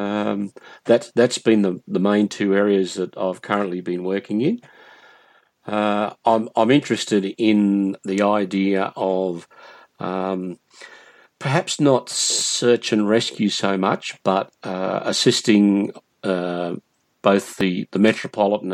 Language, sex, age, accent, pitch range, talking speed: English, male, 50-69, Australian, 95-105 Hz, 125 wpm